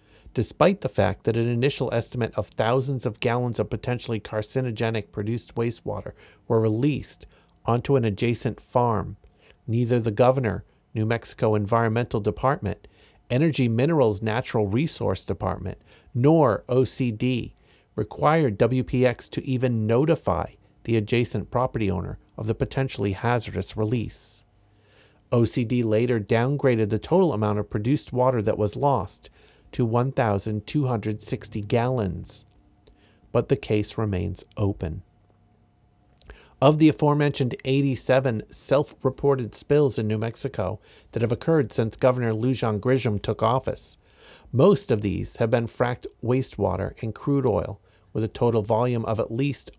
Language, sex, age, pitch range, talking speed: English, male, 50-69, 105-130 Hz, 125 wpm